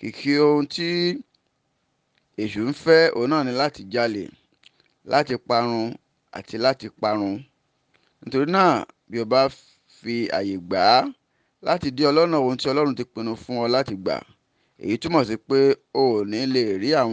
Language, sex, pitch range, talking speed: English, male, 115-145 Hz, 175 wpm